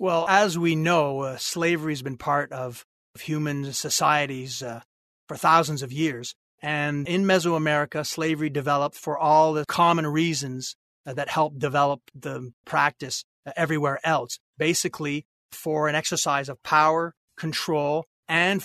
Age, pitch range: 40-59, 145-170 Hz